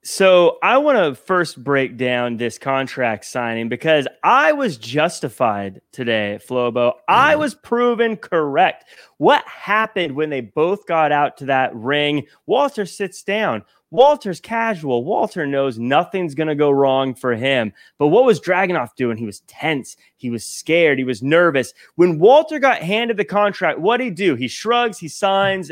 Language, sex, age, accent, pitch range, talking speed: English, male, 30-49, American, 140-225 Hz, 165 wpm